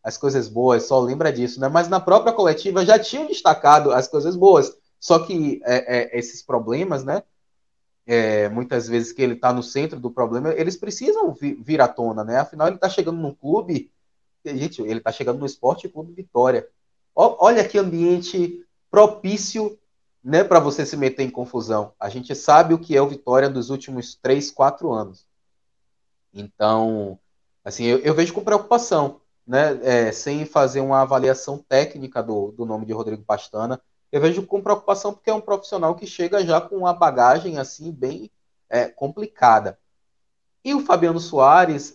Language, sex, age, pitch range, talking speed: Portuguese, male, 20-39, 120-175 Hz, 175 wpm